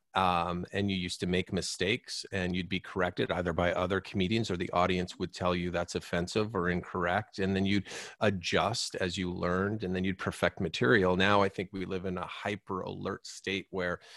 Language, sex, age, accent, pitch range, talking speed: English, male, 30-49, American, 90-105 Hz, 205 wpm